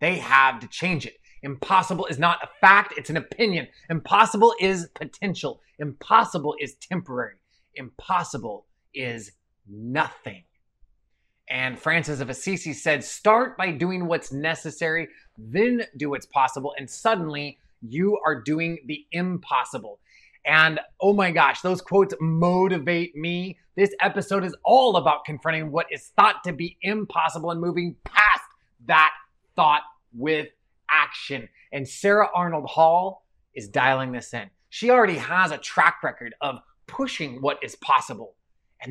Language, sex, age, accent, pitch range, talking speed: English, male, 30-49, American, 150-195 Hz, 140 wpm